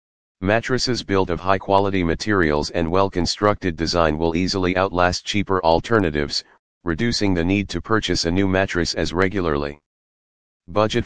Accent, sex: American, male